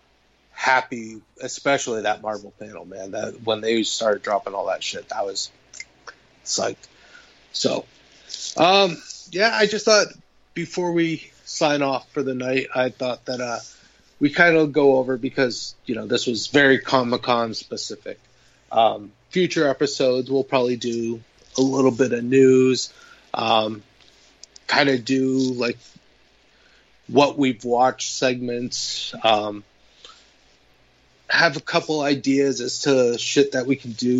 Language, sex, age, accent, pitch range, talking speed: English, male, 30-49, American, 115-135 Hz, 140 wpm